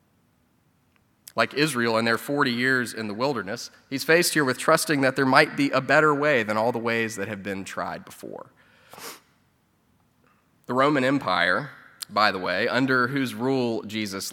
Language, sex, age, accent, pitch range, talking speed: English, male, 20-39, American, 100-130 Hz, 170 wpm